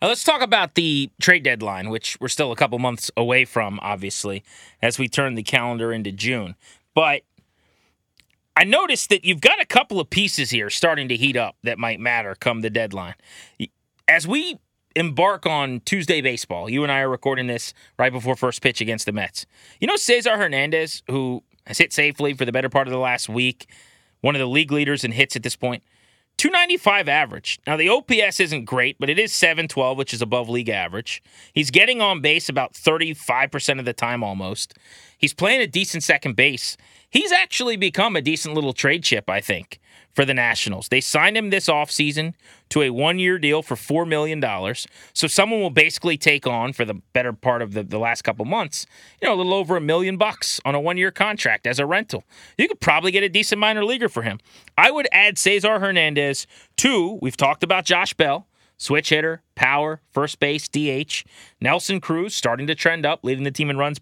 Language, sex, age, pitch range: English, male, 30-49, 120-170 Hz